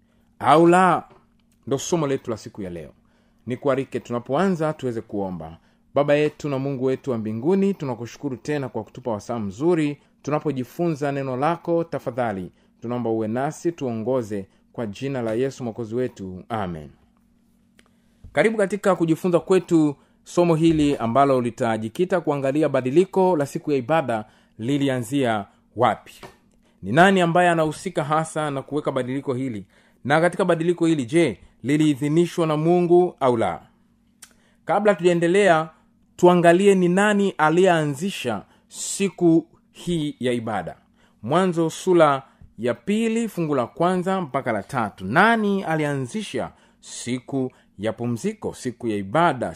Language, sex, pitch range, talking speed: Swahili, male, 125-180 Hz, 125 wpm